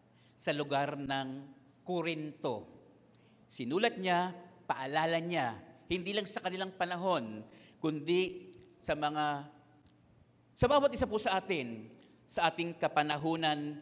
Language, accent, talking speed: English, Filipino, 110 wpm